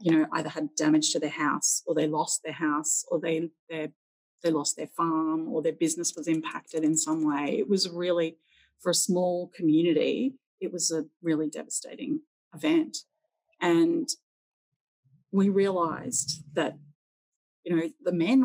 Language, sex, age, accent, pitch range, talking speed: English, female, 30-49, Australian, 160-210 Hz, 160 wpm